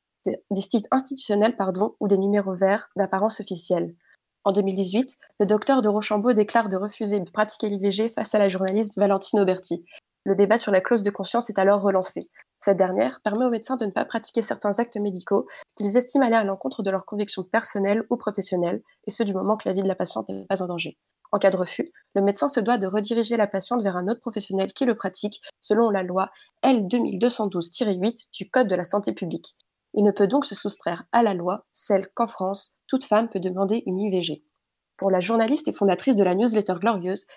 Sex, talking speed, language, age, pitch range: female, 210 wpm, French, 20-39, 195-235 Hz